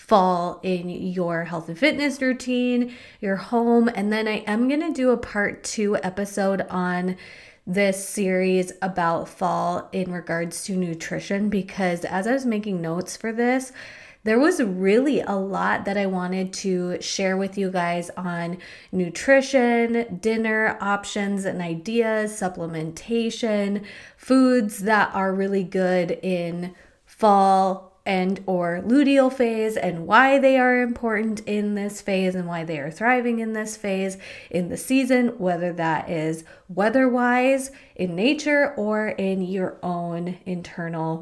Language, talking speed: English, 145 wpm